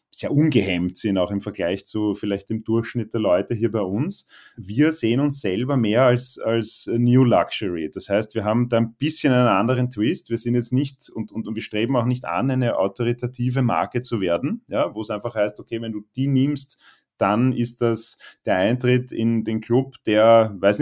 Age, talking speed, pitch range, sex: 30-49, 205 wpm, 110-125 Hz, male